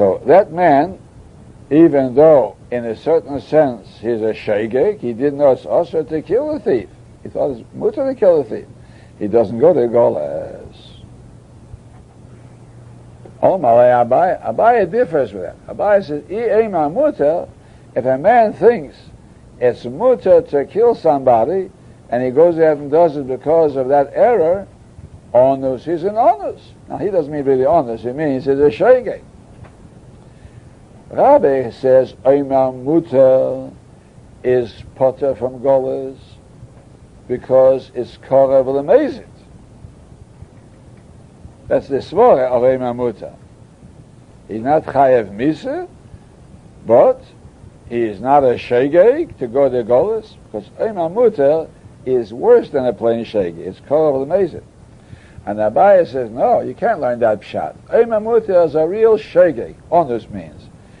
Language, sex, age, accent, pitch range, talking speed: English, male, 60-79, American, 120-180 Hz, 145 wpm